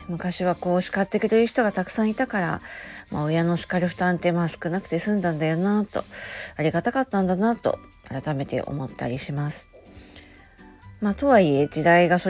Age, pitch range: 40-59, 150-190 Hz